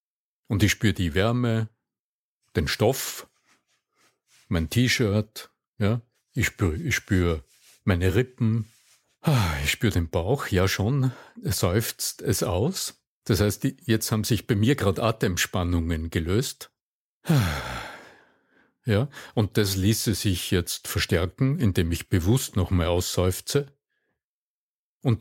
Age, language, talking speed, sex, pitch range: 50-69, German, 115 wpm, male, 95-125 Hz